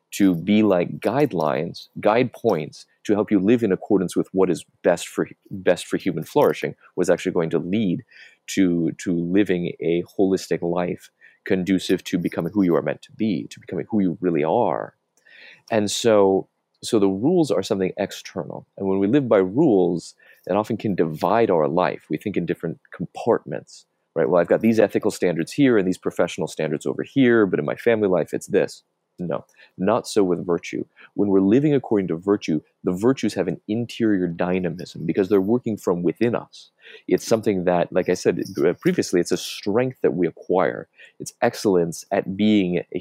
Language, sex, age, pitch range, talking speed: English, male, 30-49, 90-105 Hz, 185 wpm